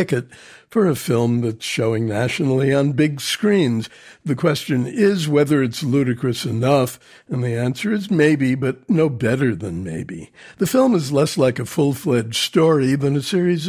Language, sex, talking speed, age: English, male, 165 wpm, 60-79